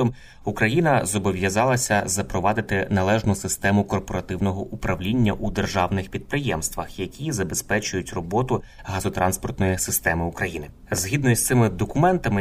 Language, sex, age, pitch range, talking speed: Ukrainian, male, 20-39, 95-115 Hz, 95 wpm